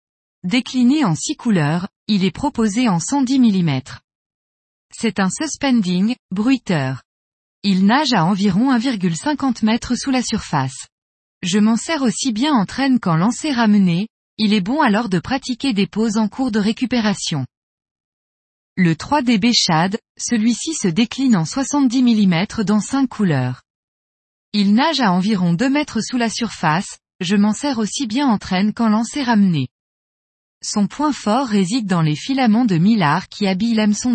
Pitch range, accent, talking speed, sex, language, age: 180-250 Hz, French, 155 wpm, female, French, 20-39